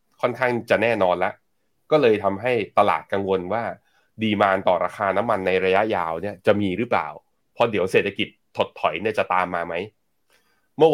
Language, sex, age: Thai, male, 20-39